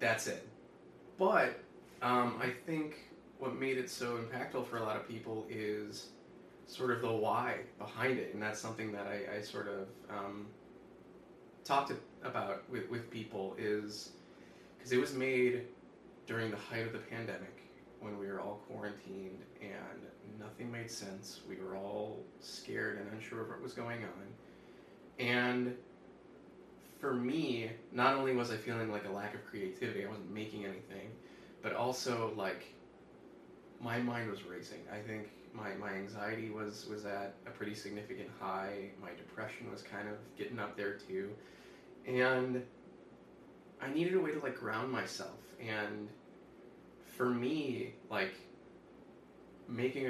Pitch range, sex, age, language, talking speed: 105-120 Hz, male, 20-39, English, 150 wpm